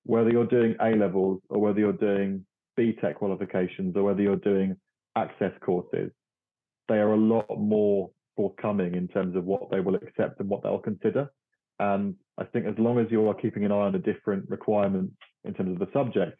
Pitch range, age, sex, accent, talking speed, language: 95-115 Hz, 30-49, male, British, 200 wpm, English